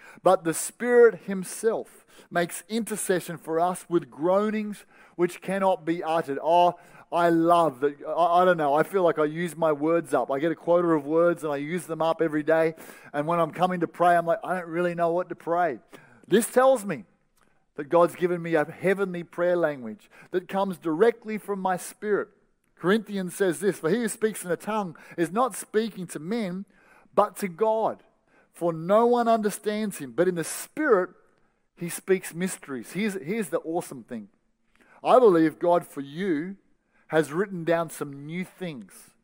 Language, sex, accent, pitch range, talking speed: English, male, Australian, 165-205 Hz, 185 wpm